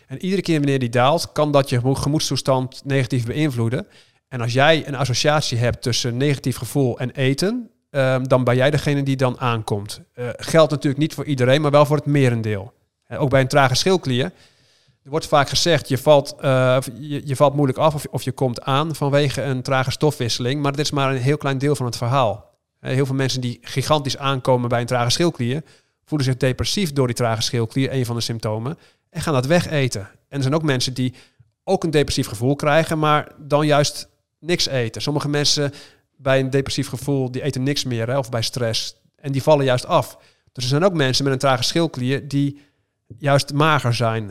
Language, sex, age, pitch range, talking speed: Dutch, male, 50-69, 125-145 Hz, 200 wpm